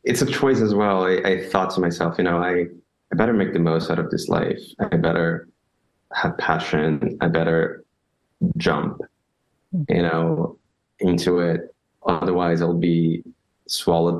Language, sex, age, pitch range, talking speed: English, male, 20-39, 85-95 Hz, 155 wpm